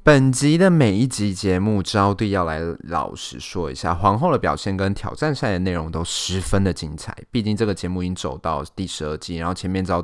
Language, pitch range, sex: Chinese, 85-105 Hz, male